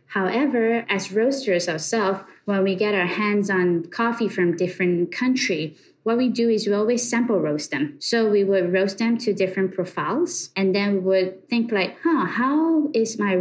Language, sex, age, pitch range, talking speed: English, female, 20-39, 170-220 Hz, 185 wpm